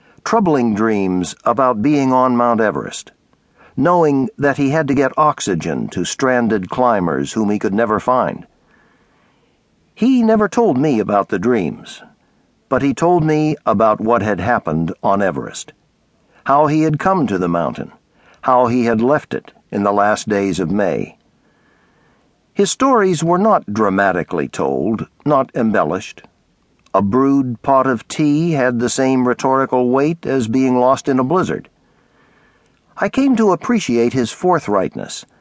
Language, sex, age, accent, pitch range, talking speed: English, male, 60-79, American, 115-155 Hz, 145 wpm